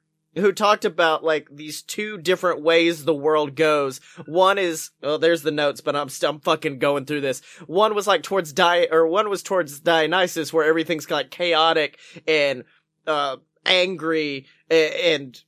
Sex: male